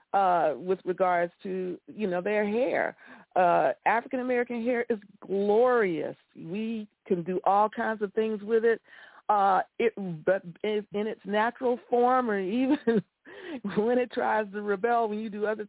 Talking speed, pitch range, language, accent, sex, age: 155 wpm, 195-235 Hz, English, American, female, 50-69